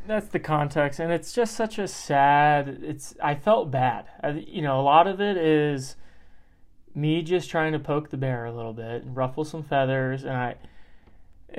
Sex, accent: male, American